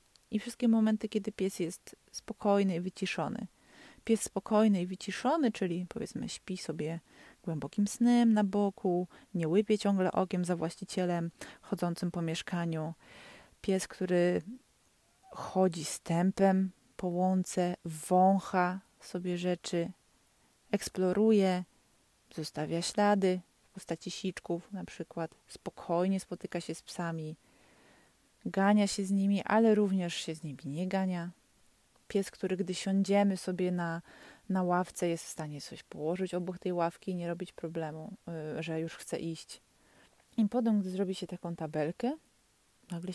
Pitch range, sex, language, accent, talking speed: 170-200 Hz, female, Polish, native, 130 wpm